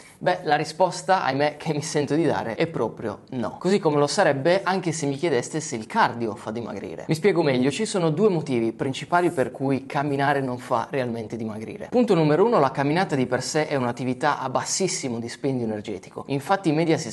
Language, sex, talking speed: Italian, male, 205 wpm